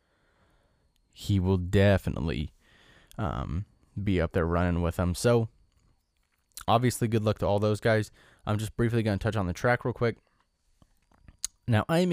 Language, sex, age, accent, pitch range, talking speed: English, male, 20-39, American, 95-125 Hz, 150 wpm